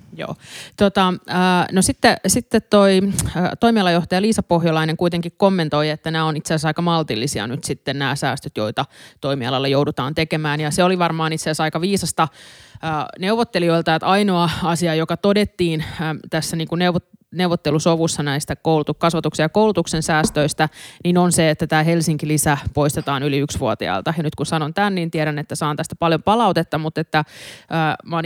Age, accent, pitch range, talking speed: 20-39, native, 150-175 Hz, 155 wpm